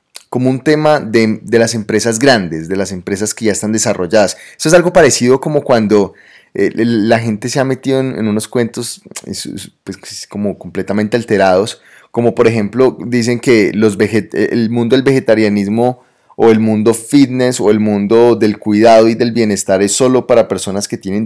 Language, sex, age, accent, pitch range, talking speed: Spanish, male, 20-39, Colombian, 105-125 Hz, 185 wpm